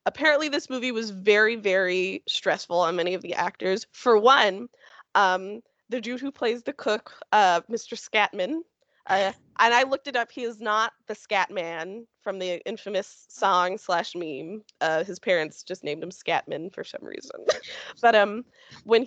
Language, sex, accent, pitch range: English, female, American, 185-235 Hz